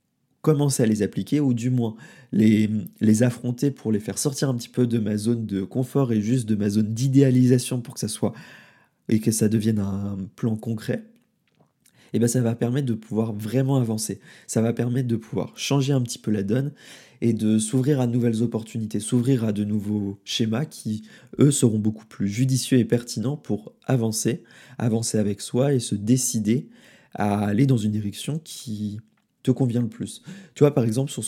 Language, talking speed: French, 195 wpm